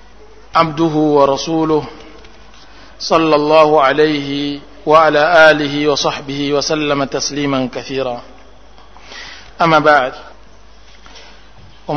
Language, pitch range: Indonesian, 135-155 Hz